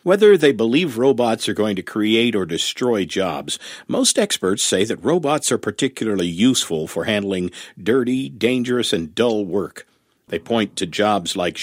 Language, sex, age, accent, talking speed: English, male, 50-69, American, 160 wpm